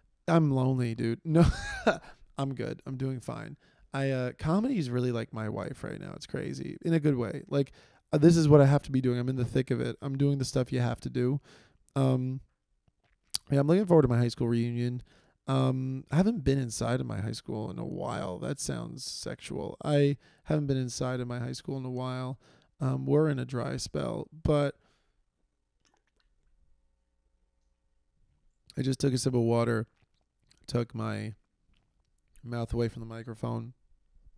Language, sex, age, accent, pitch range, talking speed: English, male, 20-39, American, 115-135 Hz, 185 wpm